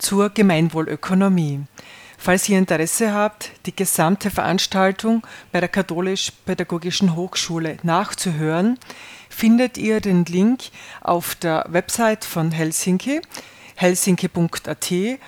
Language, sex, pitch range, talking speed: German, female, 165-205 Hz, 95 wpm